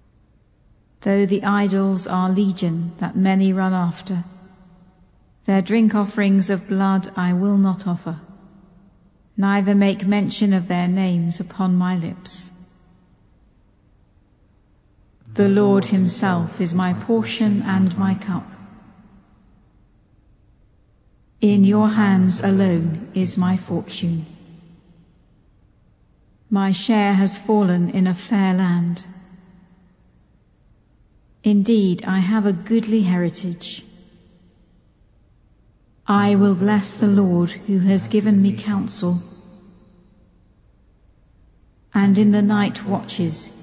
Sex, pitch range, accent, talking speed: female, 175-200 Hz, British, 100 wpm